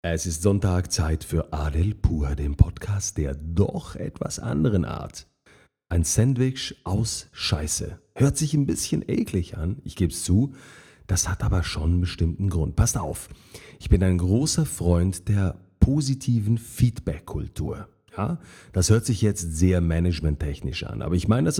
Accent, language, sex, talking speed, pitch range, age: German, German, male, 155 wpm, 90-115 Hz, 40-59